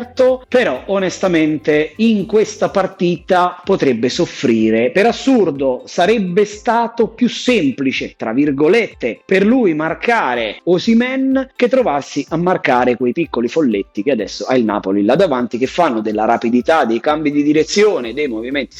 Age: 30-49